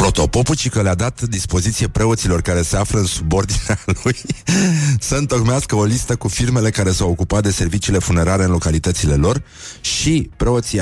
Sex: male